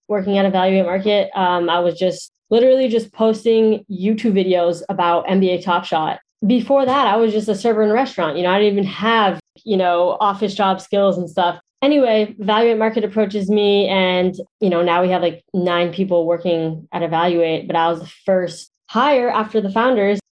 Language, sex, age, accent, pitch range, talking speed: English, female, 20-39, American, 175-220 Hz, 195 wpm